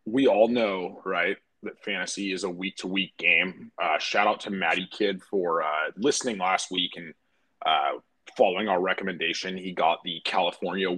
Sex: male